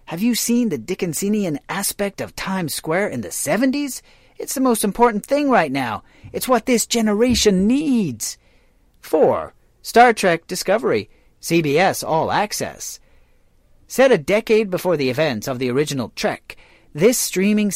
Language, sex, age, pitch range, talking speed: English, male, 40-59, 160-225 Hz, 145 wpm